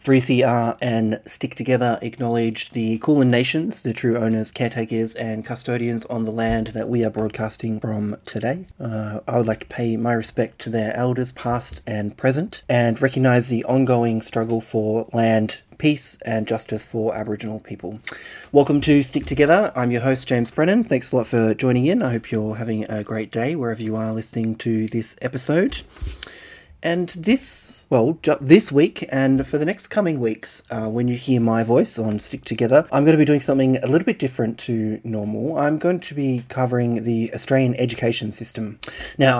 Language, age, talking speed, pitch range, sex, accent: English, 30-49, 185 wpm, 115-135 Hz, male, Australian